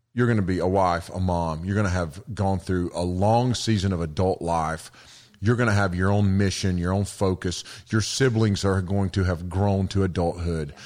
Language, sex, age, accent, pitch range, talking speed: English, male, 40-59, American, 95-120 Hz, 215 wpm